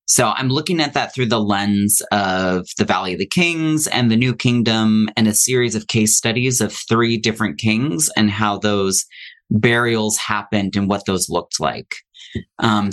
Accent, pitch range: American, 105-125 Hz